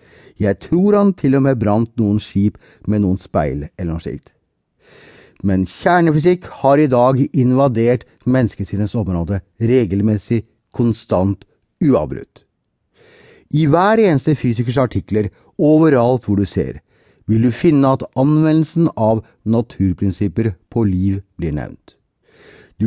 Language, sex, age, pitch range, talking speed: English, male, 60-79, 100-140 Hz, 120 wpm